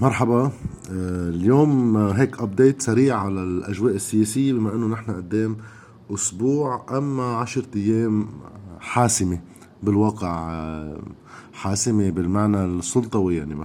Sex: male